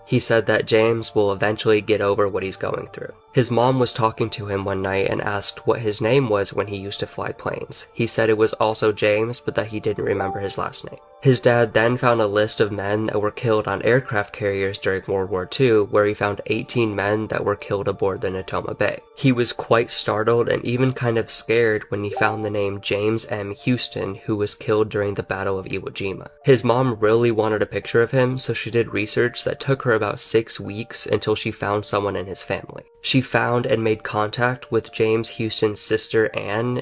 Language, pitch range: English, 105-120 Hz